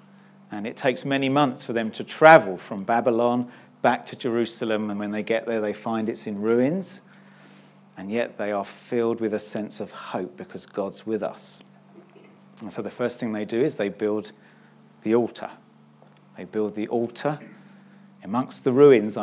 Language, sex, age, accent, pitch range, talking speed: English, male, 40-59, British, 110-140 Hz, 180 wpm